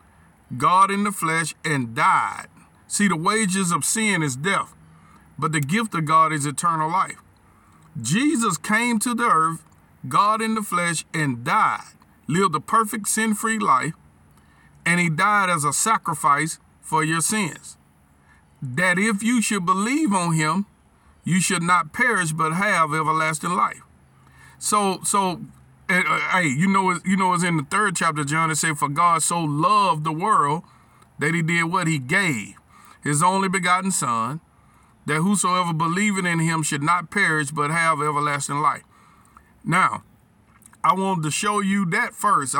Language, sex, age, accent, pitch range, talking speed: English, male, 50-69, American, 140-195 Hz, 160 wpm